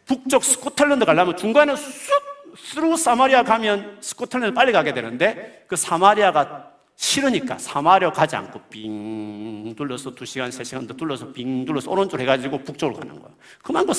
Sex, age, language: male, 40-59, Korean